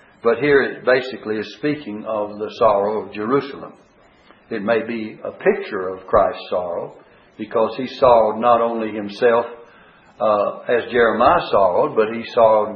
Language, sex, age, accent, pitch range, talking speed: English, male, 60-79, American, 115-150 Hz, 150 wpm